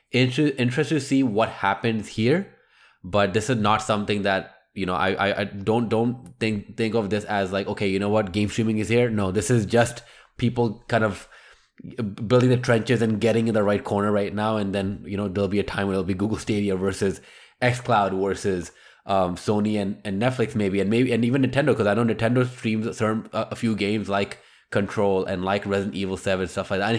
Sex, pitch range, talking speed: male, 100-115 Hz, 220 wpm